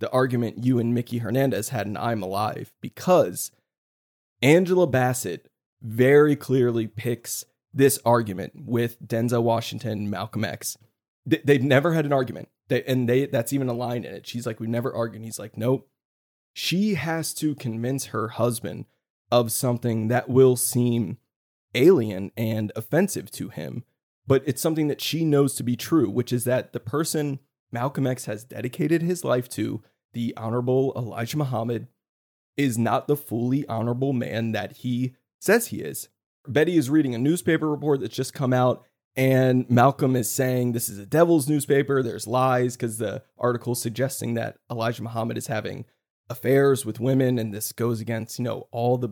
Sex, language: male, English